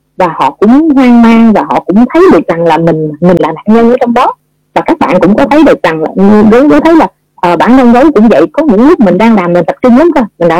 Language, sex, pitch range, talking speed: Vietnamese, female, 175-255 Hz, 295 wpm